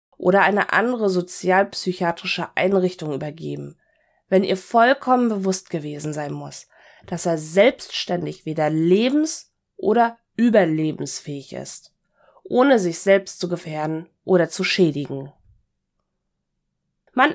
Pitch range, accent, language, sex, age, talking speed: 160-200 Hz, German, German, female, 20-39, 105 wpm